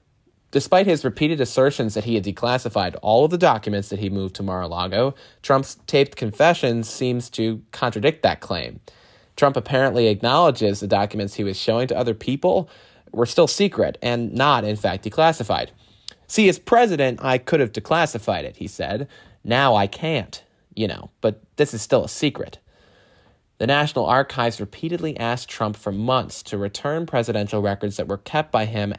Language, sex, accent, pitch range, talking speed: English, male, American, 100-135 Hz, 170 wpm